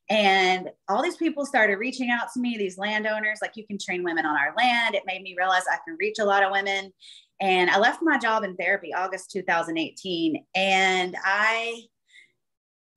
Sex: female